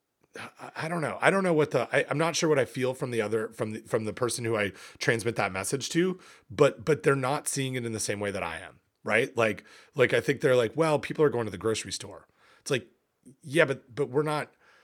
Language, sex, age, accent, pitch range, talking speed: English, male, 30-49, American, 115-155 Hz, 255 wpm